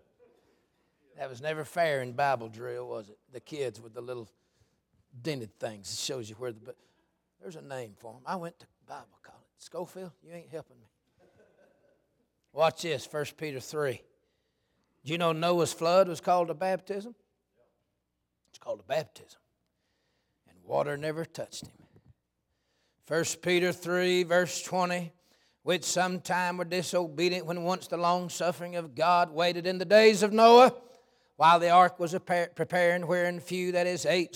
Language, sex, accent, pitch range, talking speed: English, male, American, 155-200 Hz, 160 wpm